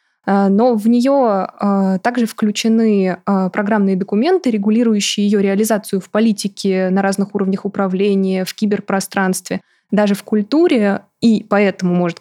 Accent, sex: native, female